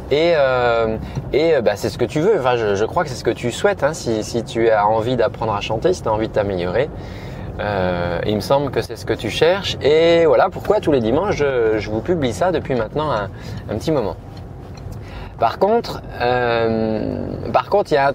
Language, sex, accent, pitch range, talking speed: French, male, French, 115-170 Hz, 230 wpm